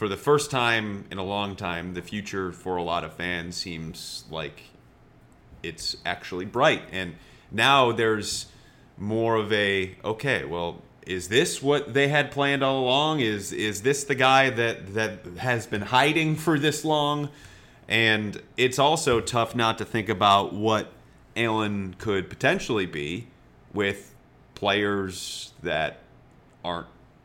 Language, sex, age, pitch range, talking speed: English, male, 30-49, 90-115 Hz, 145 wpm